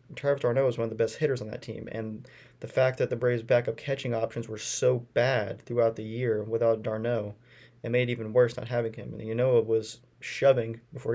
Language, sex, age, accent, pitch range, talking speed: English, male, 20-39, American, 115-130 Hz, 230 wpm